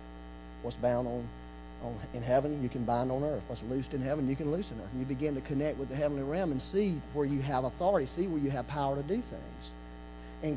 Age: 40-59